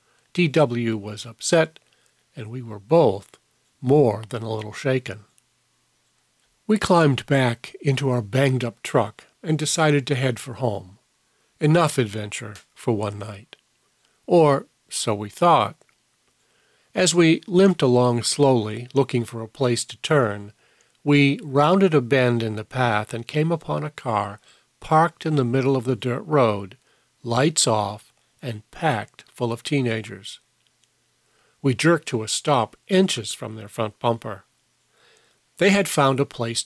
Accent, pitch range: American, 115-145 Hz